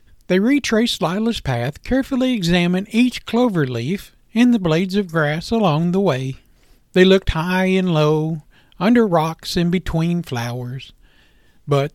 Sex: male